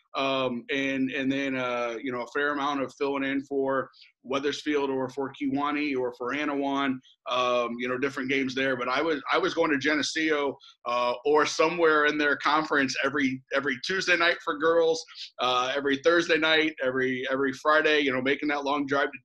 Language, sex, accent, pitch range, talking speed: English, male, American, 130-150 Hz, 190 wpm